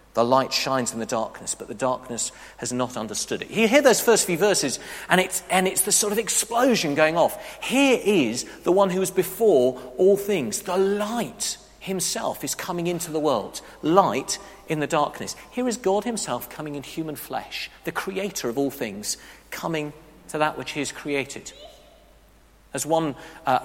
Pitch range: 145-195 Hz